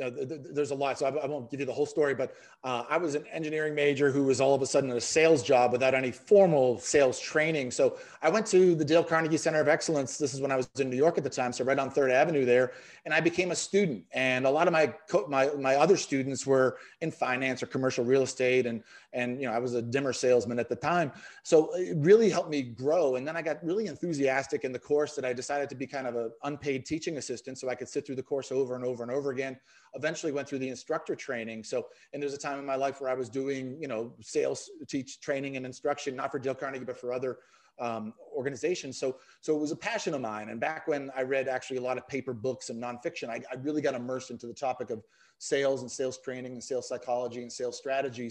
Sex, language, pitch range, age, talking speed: male, English, 125-150 Hz, 30-49, 260 wpm